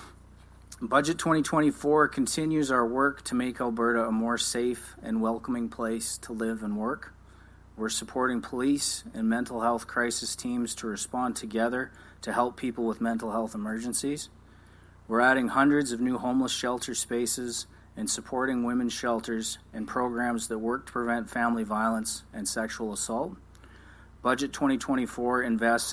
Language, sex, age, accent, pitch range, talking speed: English, male, 30-49, American, 110-125 Hz, 145 wpm